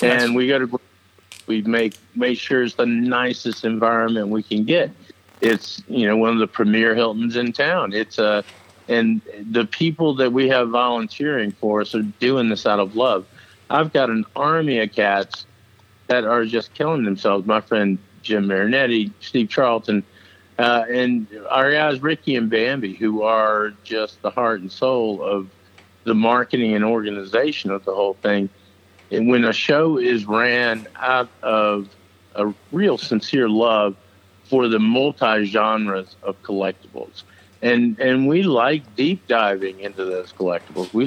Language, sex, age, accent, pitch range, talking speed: English, male, 50-69, American, 100-120 Hz, 160 wpm